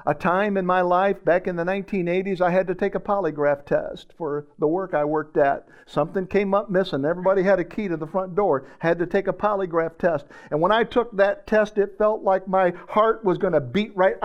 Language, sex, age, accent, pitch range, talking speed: English, male, 50-69, American, 190-250 Hz, 235 wpm